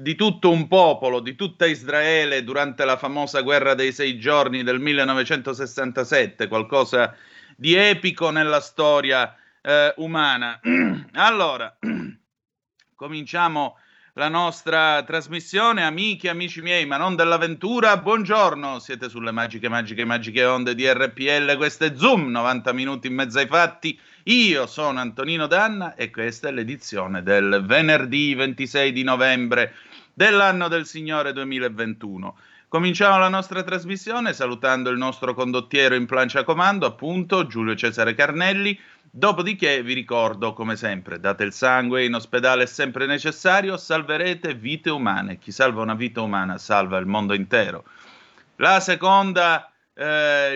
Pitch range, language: 125-170 Hz, Italian